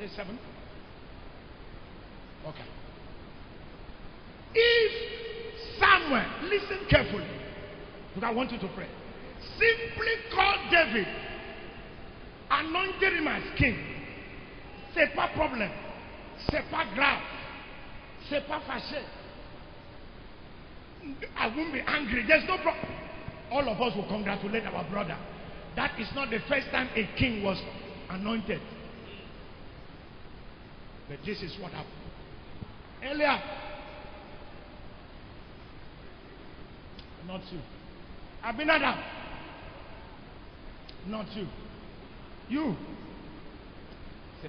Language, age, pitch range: English, 50-69, 200-330 Hz